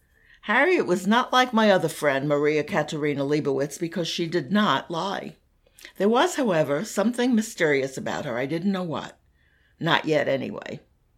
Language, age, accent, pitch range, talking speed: English, 60-79, American, 145-185 Hz, 155 wpm